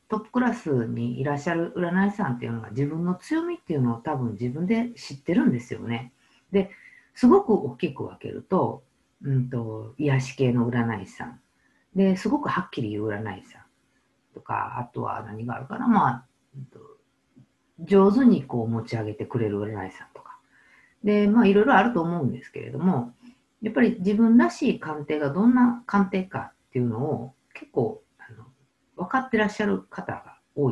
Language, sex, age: Japanese, female, 50-69